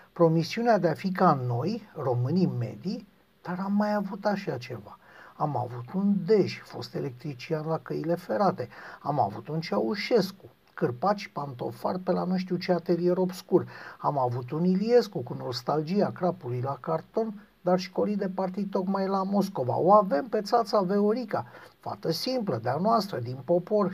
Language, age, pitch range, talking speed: Romanian, 50-69, 155-205 Hz, 165 wpm